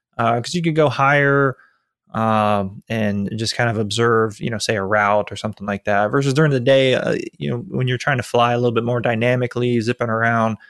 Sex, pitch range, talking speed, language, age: male, 110-140 Hz, 225 wpm, English, 20-39